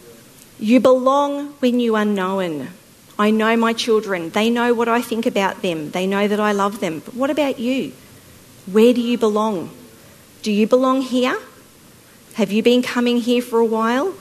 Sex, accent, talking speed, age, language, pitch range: female, Australian, 180 wpm, 40-59, English, 200-245 Hz